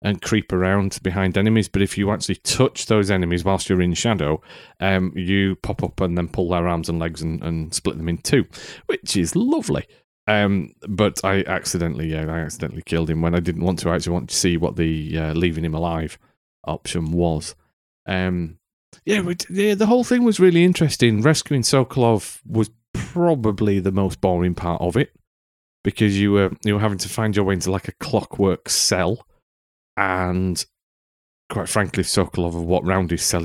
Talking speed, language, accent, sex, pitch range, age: 190 wpm, English, British, male, 85-110 Hz, 30-49